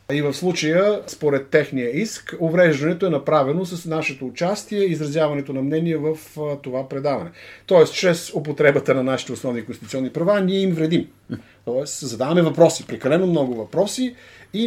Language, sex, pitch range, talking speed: Bulgarian, male, 135-185 Hz, 145 wpm